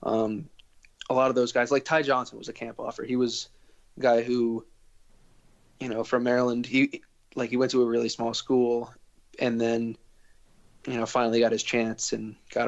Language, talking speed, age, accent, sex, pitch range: English, 195 wpm, 20-39, American, male, 115-130 Hz